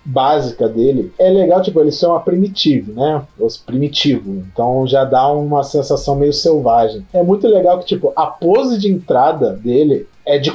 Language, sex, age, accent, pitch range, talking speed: Portuguese, male, 40-59, Brazilian, 135-180 Hz, 180 wpm